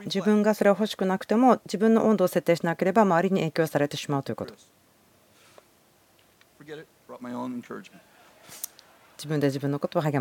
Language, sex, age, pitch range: Japanese, female, 40-59, 135-190 Hz